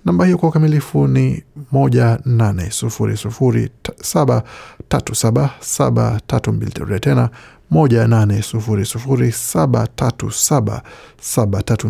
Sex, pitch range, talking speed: male, 110-135 Hz, 125 wpm